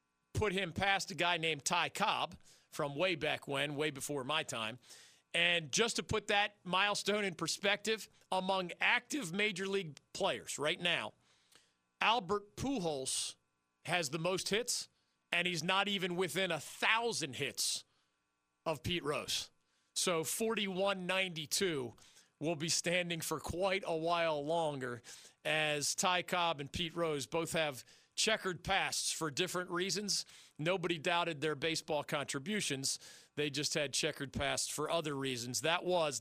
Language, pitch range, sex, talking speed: English, 140-180 Hz, male, 145 wpm